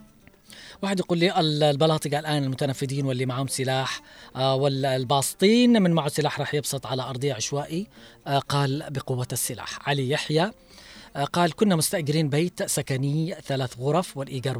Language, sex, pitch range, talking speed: Arabic, female, 130-160 Hz, 125 wpm